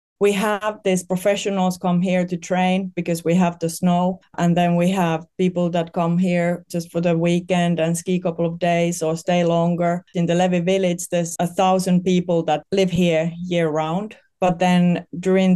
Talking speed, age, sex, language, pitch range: 195 wpm, 30-49, female, English, 165-185 Hz